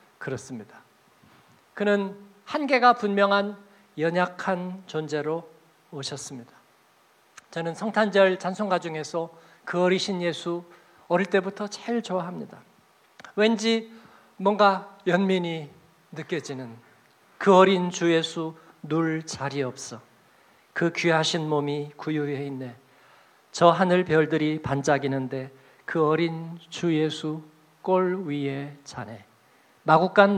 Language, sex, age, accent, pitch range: Korean, male, 50-69, native, 155-225 Hz